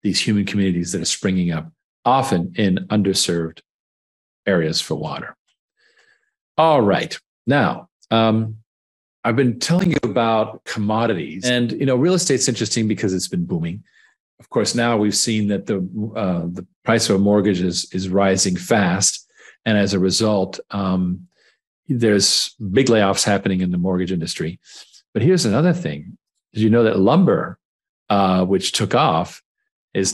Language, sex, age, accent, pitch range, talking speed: English, male, 50-69, American, 95-115 Hz, 155 wpm